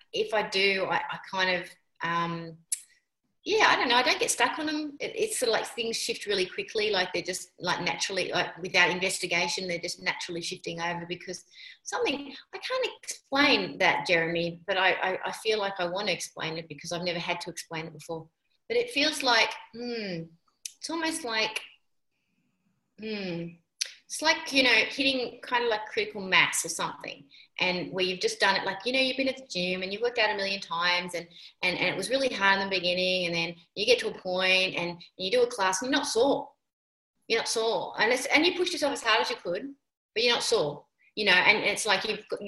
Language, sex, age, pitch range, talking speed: English, female, 30-49, 175-265 Hz, 225 wpm